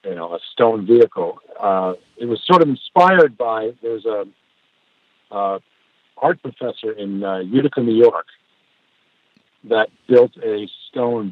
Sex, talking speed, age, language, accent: male, 140 wpm, 50-69, English, American